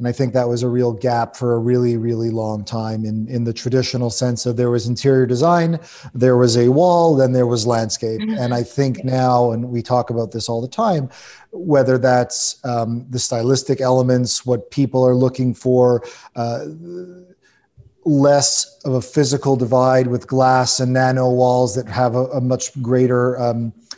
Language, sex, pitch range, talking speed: English, male, 125-150 Hz, 185 wpm